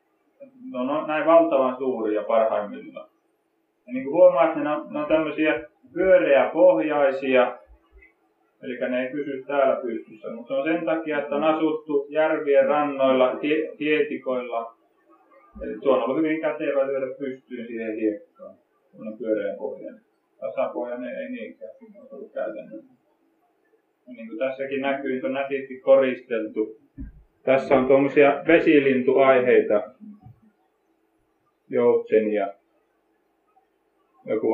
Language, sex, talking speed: Finnish, male, 115 wpm